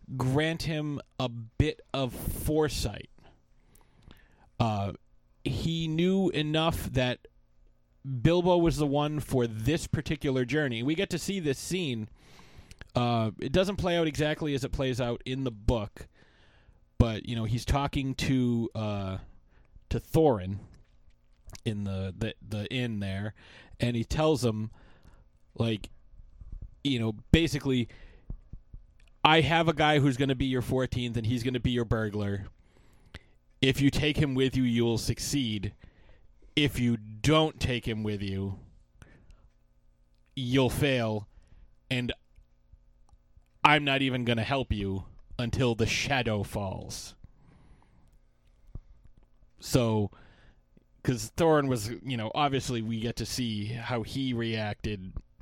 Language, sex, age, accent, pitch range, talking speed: English, male, 30-49, American, 100-135 Hz, 130 wpm